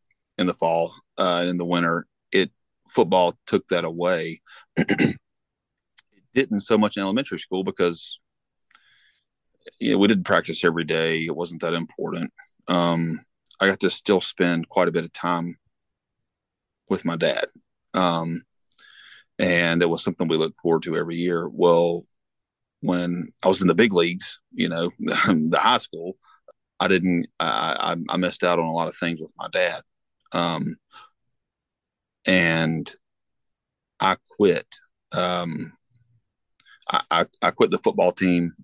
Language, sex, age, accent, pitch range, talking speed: English, male, 30-49, American, 85-90 Hz, 150 wpm